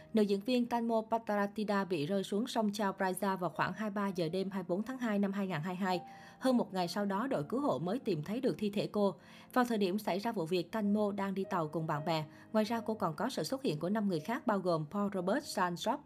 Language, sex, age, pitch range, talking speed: Vietnamese, female, 20-39, 185-230 Hz, 250 wpm